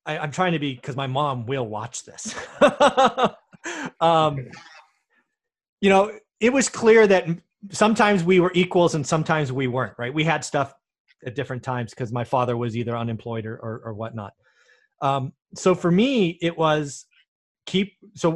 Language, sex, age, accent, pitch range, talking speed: English, male, 30-49, American, 120-160 Hz, 165 wpm